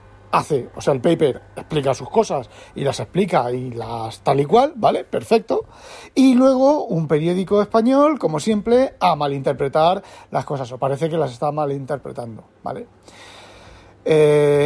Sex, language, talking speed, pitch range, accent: male, Spanish, 150 wpm, 140-195 Hz, Spanish